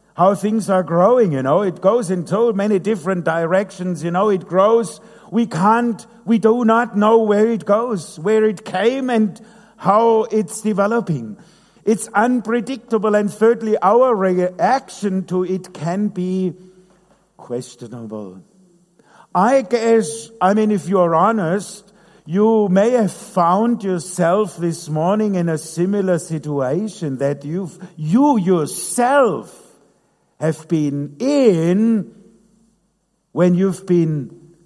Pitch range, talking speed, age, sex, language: 175-220 Hz, 125 wpm, 50-69, male, English